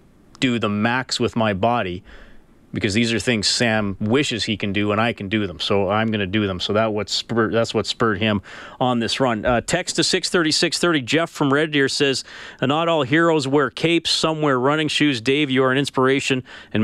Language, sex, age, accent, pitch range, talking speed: English, male, 40-59, American, 115-145 Hz, 215 wpm